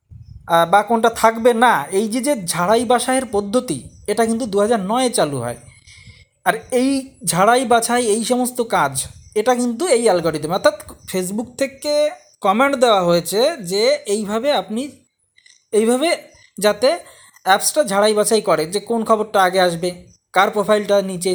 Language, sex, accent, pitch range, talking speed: Bengali, male, native, 175-245 Hz, 140 wpm